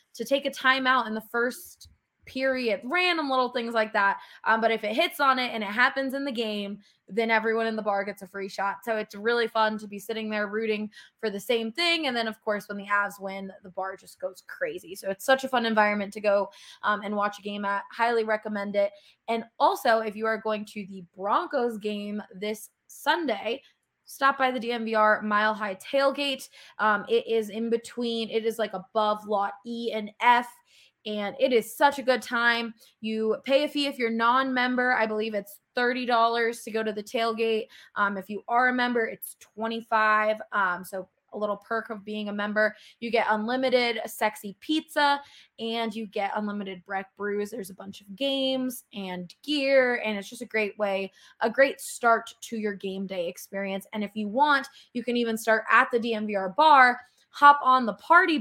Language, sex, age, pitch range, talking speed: English, female, 20-39, 205-250 Hz, 205 wpm